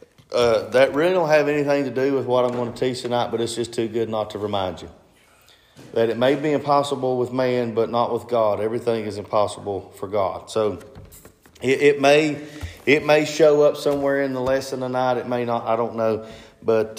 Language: English